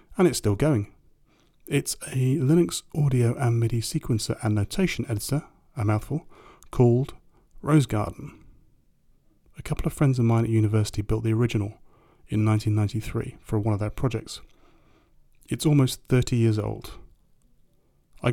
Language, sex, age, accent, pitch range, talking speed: English, male, 30-49, British, 110-125 Hz, 140 wpm